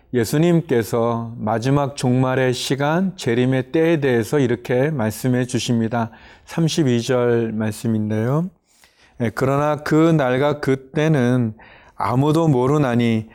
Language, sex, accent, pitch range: Korean, male, native, 115-150 Hz